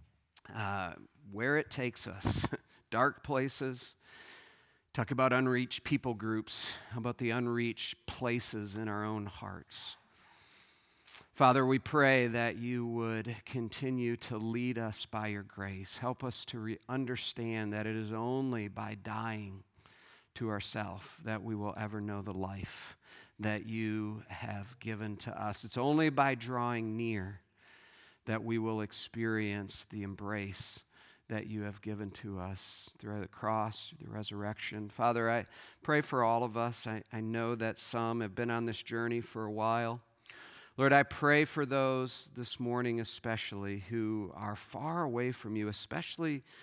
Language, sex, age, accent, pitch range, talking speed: English, male, 40-59, American, 105-120 Hz, 150 wpm